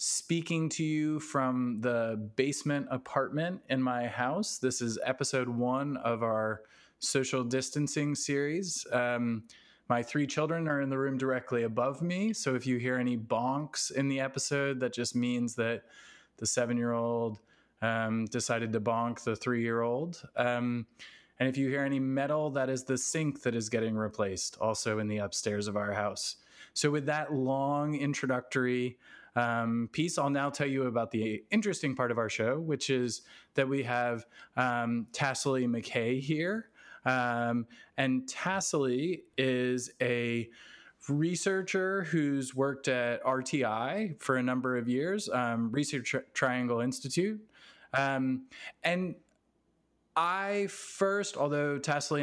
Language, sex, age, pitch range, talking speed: English, male, 20-39, 120-145 Hz, 145 wpm